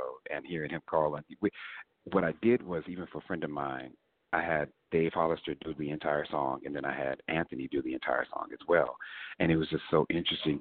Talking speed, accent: 225 wpm, American